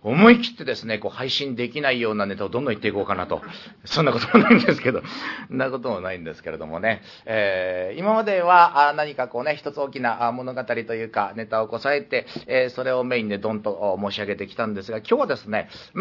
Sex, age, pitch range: male, 40-59, 105-150 Hz